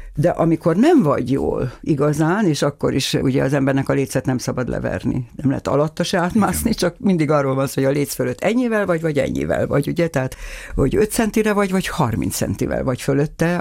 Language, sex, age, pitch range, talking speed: Hungarian, female, 60-79, 130-155 Hz, 205 wpm